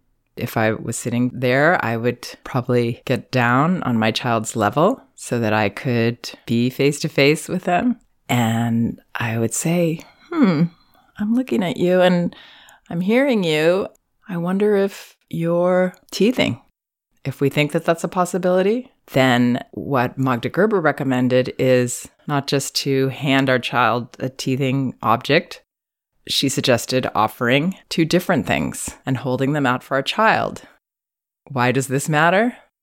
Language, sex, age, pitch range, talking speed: English, female, 30-49, 120-175 Hz, 145 wpm